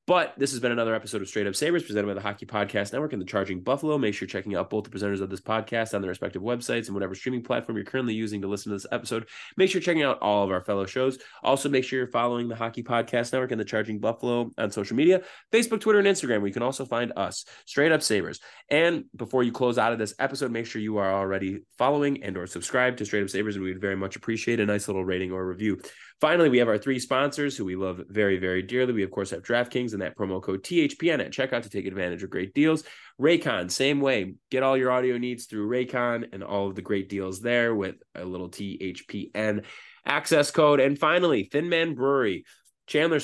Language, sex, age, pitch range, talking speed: English, male, 20-39, 100-130 Hz, 245 wpm